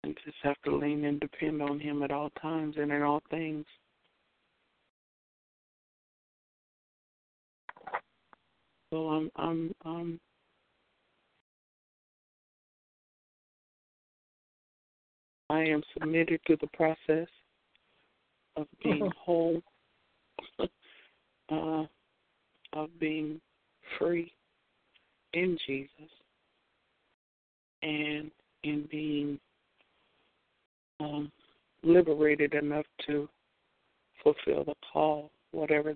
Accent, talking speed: American, 75 wpm